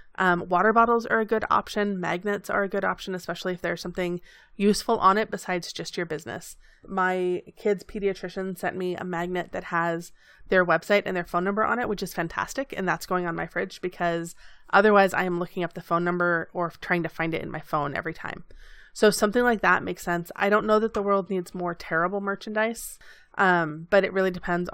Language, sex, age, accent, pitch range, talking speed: English, female, 20-39, American, 175-200 Hz, 215 wpm